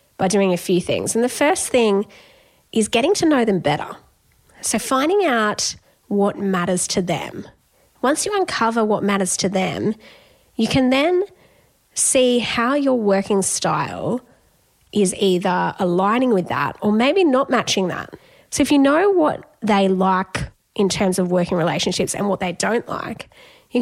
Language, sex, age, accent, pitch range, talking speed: English, female, 20-39, Australian, 195-275 Hz, 165 wpm